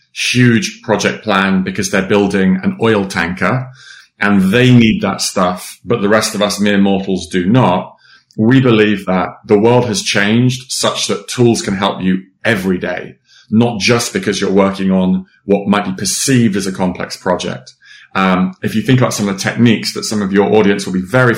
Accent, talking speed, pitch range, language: British, 195 wpm, 95-125 Hz, English